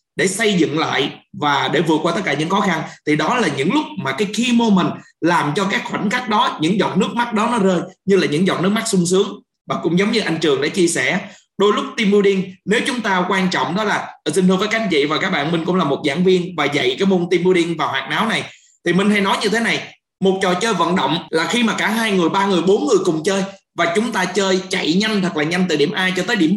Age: 20-39